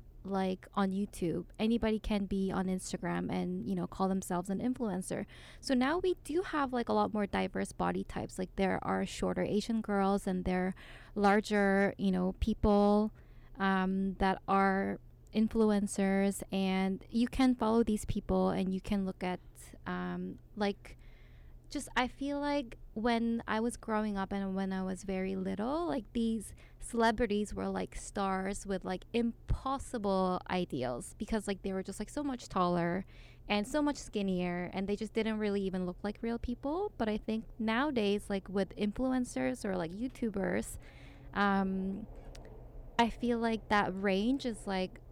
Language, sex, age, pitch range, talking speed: English, female, 20-39, 185-225 Hz, 165 wpm